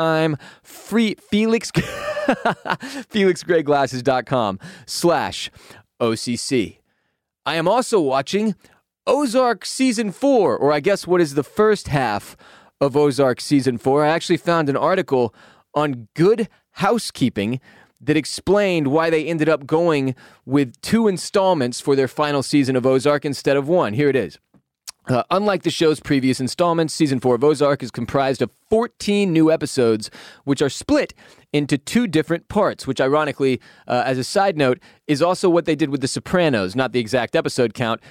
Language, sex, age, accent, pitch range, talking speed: English, male, 30-49, American, 130-175 Hz, 150 wpm